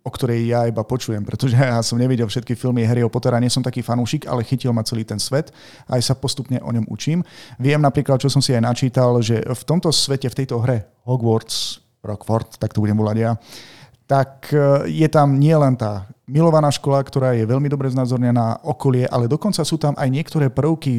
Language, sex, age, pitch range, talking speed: Slovak, male, 40-59, 115-135 Hz, 200 wpm